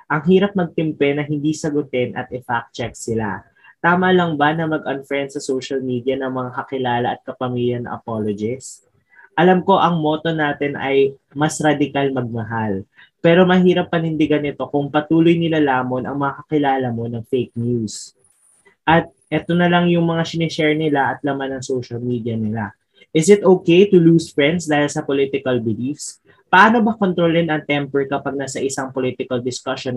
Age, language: 20-39, Filipino